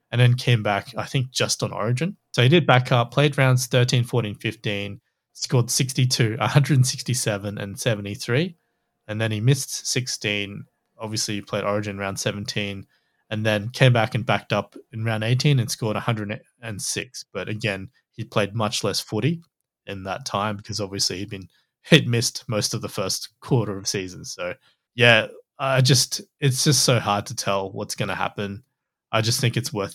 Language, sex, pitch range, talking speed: English, male, 105-125 Hz, 185 wpm